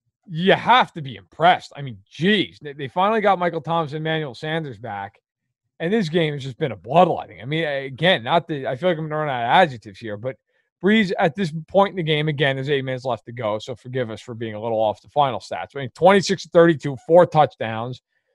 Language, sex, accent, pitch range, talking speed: English, male, American, 140-210 Hz, 235 wpm